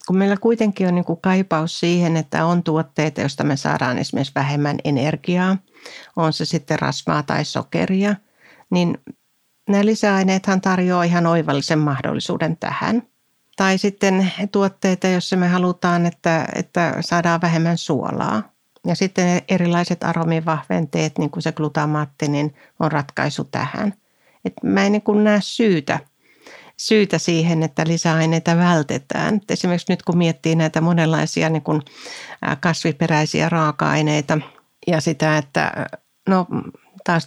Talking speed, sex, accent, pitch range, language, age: 120 wpm, female, native, 160-190 Hz, Finnish, 60-79